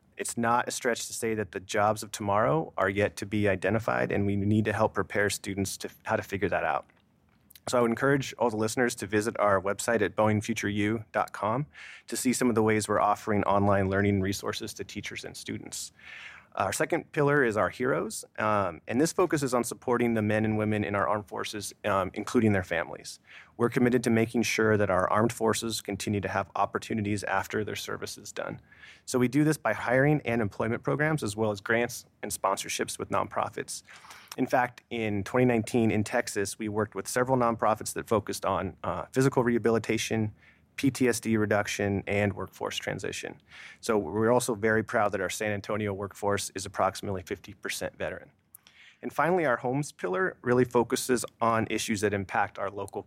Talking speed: 185 wpm